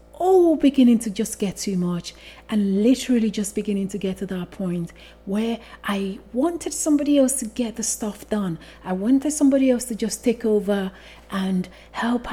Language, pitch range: English, 200-265 Hz